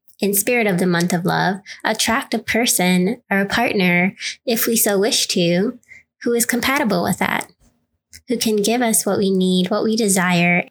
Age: 20-39